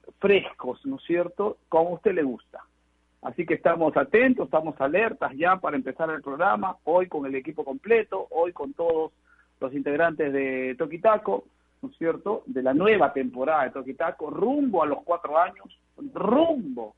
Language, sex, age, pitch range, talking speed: Spanish, male, 50-69, 155-205 Hz, 165 wpm